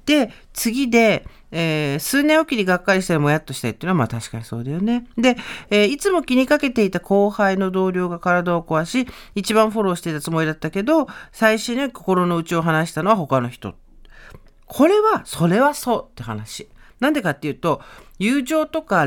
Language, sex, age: Japanese, male, 50-69